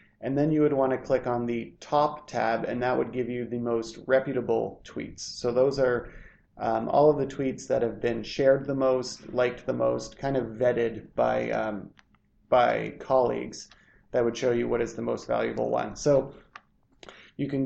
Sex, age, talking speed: male, 30-49, 195 wpm